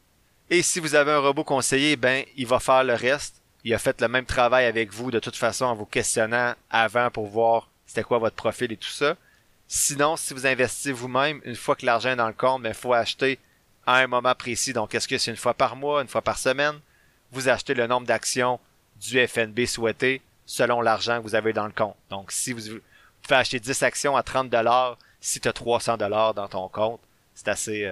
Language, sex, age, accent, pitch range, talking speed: French, male, 30-49, Canadian, 115-135 Hz, 230 wpm